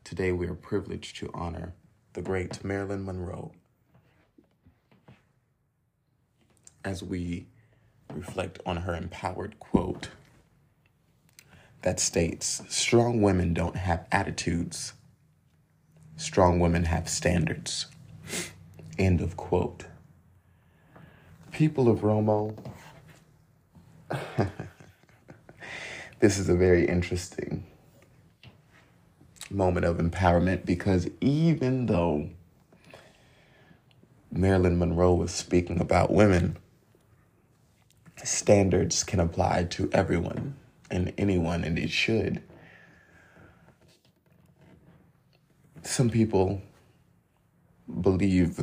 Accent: American